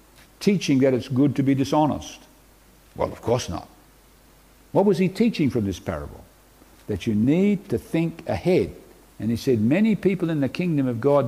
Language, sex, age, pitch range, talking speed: English, male, 60-79, 120-175 Hz, 180 wpm